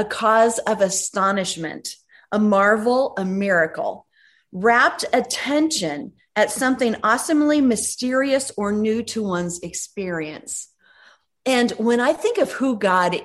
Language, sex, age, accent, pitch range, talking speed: English, female, 30-49, American, 185-245 Hz, 120 wpm